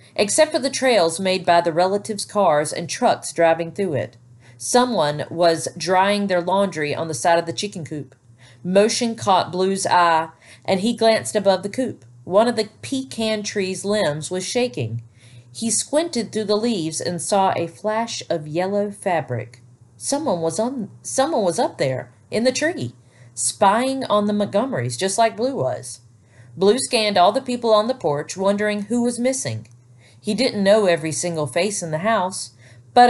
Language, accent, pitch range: English, American, 140-215 Hz